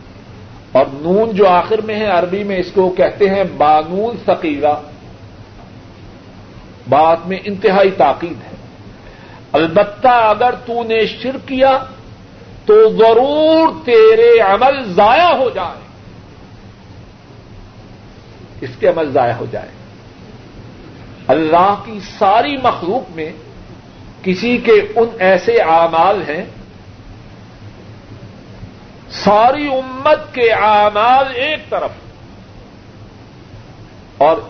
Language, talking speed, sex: Urdu, 95 wpm, male